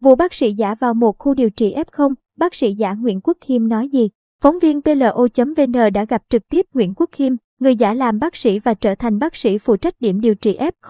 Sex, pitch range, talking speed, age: male, 220-265 Hz, 240 wpm, 20-39